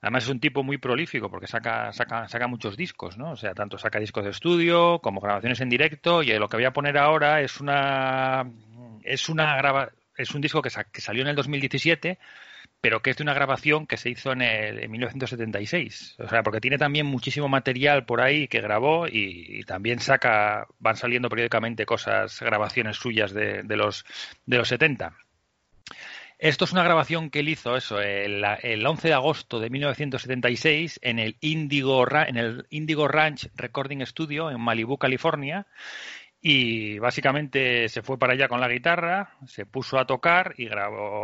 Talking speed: 185 wpm